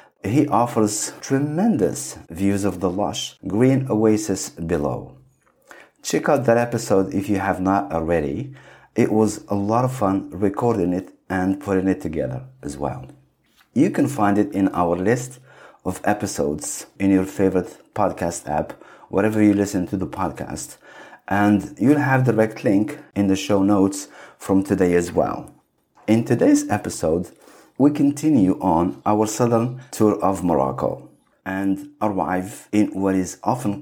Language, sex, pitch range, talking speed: English, male, 95-115 Hz, 145 wpm